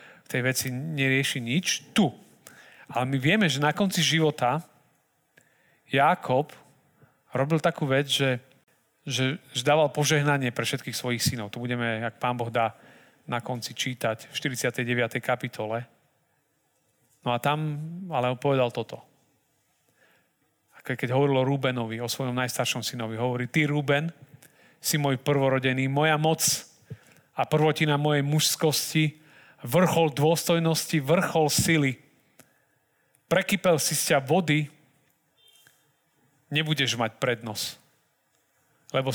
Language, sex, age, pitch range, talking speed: Slovak, male, 40-59, 125-155 Hz, 120 wpm